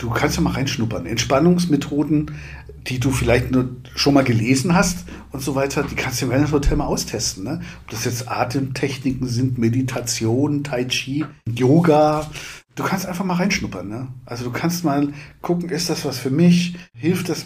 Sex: male